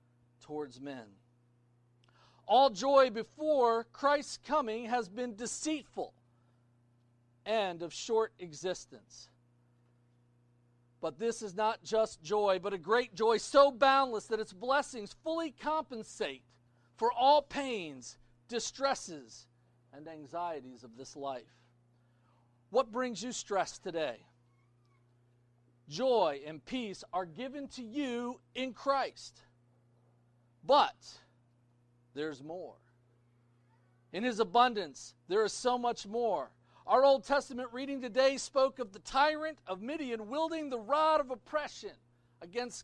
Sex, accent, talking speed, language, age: male, American, 115 wpm, English, 40-59